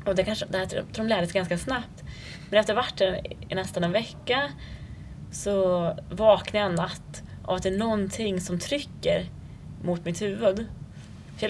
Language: English